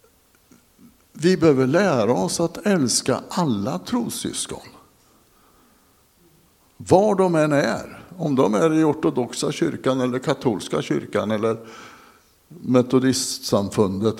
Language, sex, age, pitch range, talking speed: Swedish, male, 60-79, 125-155 Hz, 95 wpm